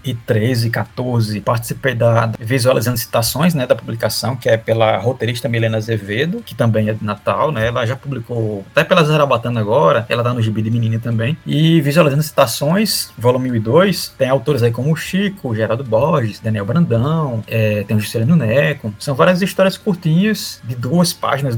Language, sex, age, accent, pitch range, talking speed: Portuguese, male, 20-39, Brazilian, 115-170 Hz, 180 wpm